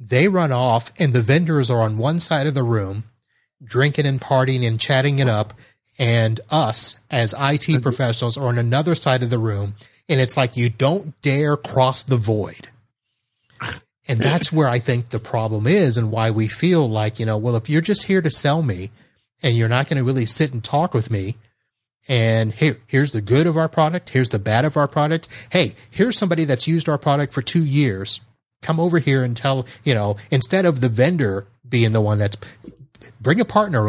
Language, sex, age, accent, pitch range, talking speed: English, male, 30-49, American, 115-140 Hz, 205 wpm